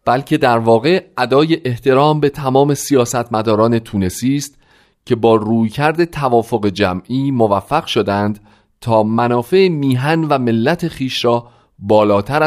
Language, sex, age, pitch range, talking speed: Persian, male, 40-59, 105-140 Hz, 120 wpm